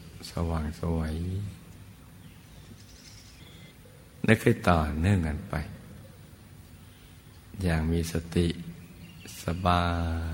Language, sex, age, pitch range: Thai, male, 60-79, 85-95 Hz